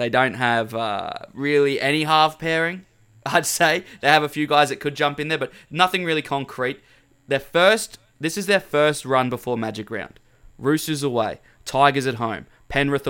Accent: Australian